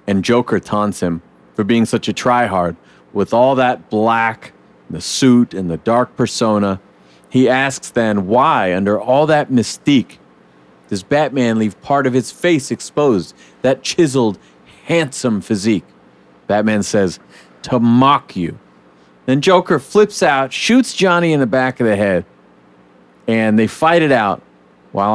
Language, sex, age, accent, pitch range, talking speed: English, male, 40-59, American, 100-140 Hz, 150 wpm